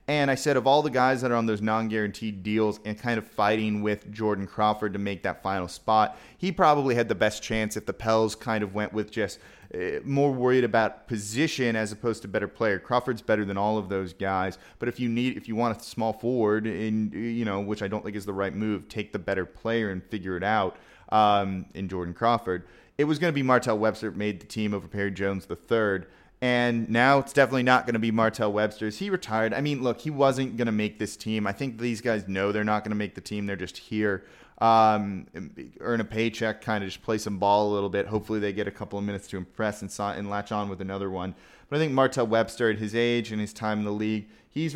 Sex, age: male, 20-39